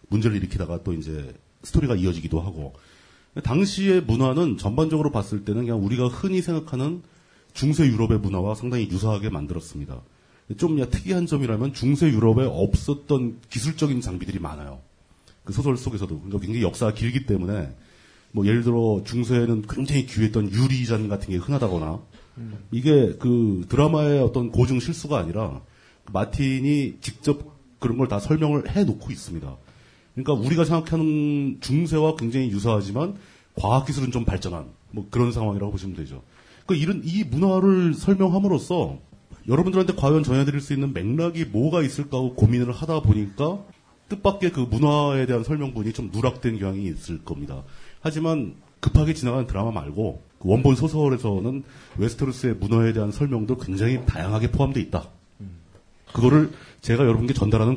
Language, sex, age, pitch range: Korean, male, 40-59, 100-145 Hz